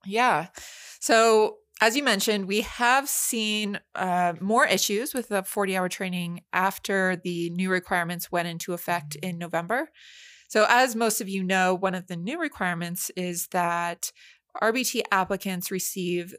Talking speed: 145 wpm